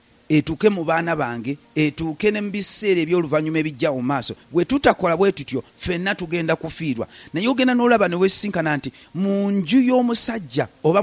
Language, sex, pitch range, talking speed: English, male, 155-205 Hz, 140 wpm